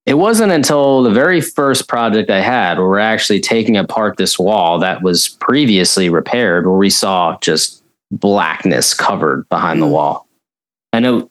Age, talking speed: 20-39, 165 wpm